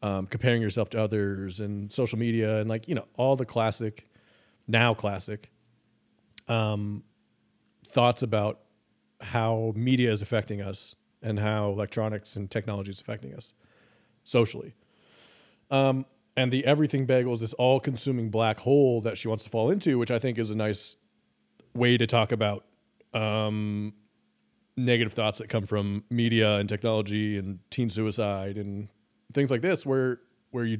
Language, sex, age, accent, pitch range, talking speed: English, male, 30-49, American, 105-120 Hz, 155 wpm